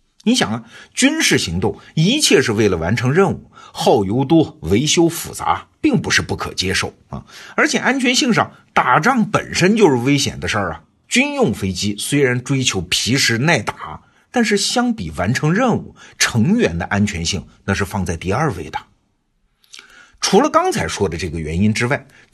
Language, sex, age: Chinese, male, 50-69